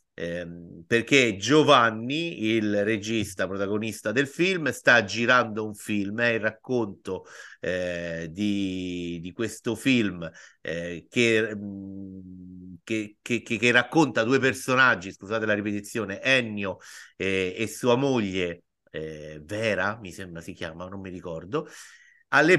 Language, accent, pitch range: Italian, native, 100-130 Hz